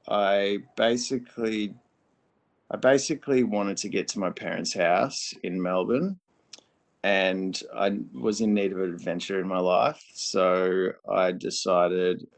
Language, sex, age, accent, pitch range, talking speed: English, male, 30-49, Australian, 90-105 Hz, 130 wpm